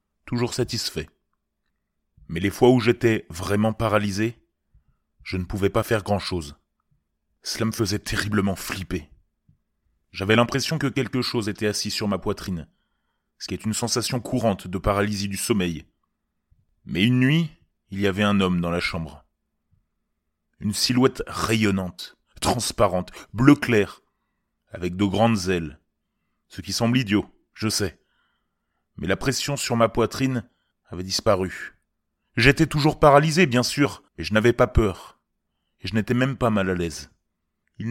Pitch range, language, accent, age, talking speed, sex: 90-125 Hz, French, French, 30-49, 150 wpm, male